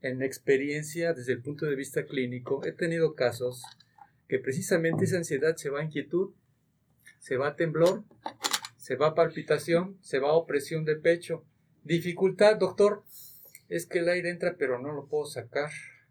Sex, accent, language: male, Mexican, Spanish